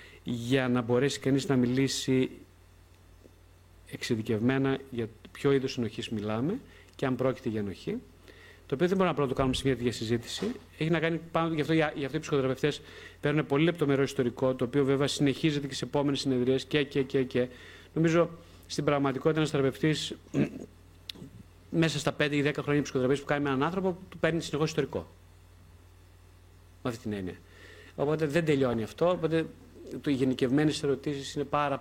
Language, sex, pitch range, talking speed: Greek, male, 110-150 Hz, 170 wpm